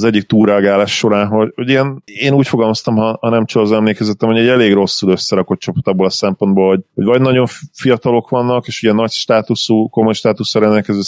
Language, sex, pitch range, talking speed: Hungarian, male, 95-115 Hz, 200 wpm